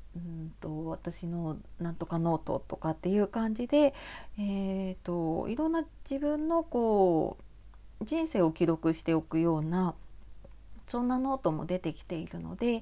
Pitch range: 165-240 Hz